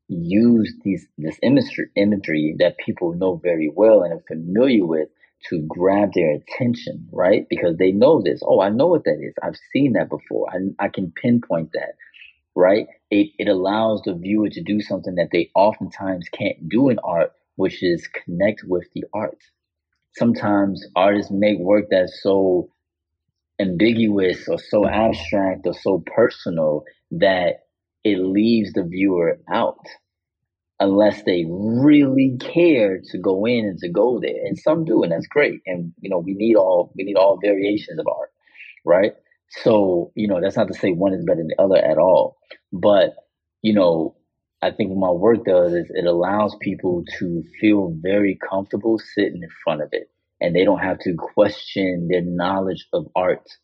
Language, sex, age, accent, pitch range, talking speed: English, male, 30-49, American, 90-105 Hz, 175 wpm